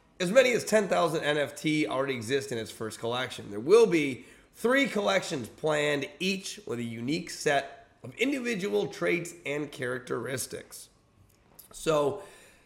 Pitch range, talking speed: 120-160 Hz, 135 wpm